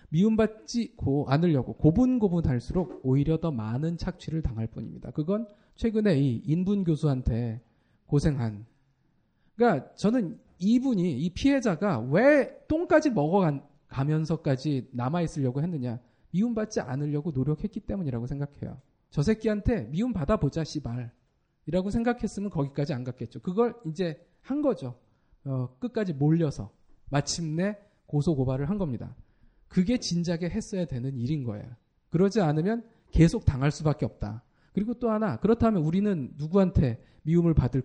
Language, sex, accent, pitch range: Korean, male, native, 130-190 Hz